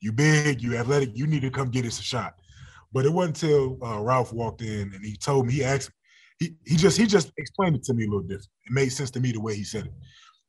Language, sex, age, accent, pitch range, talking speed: English, male, 20-39, American, 110-140 Hz, 280 wpm